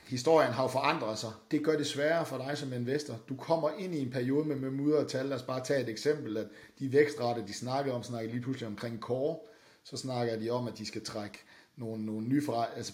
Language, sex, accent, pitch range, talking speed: Danish, male, native, 110-135 Hz, 240 wpm